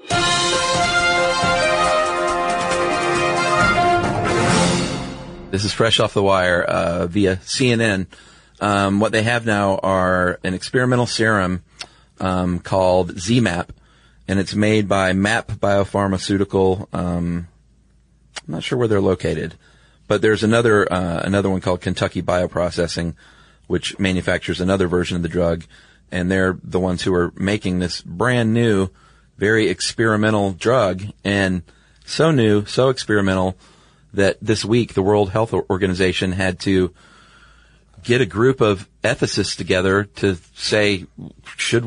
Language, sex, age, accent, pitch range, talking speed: English, male, 30-49, American, 90-115 Hz, 120 wpm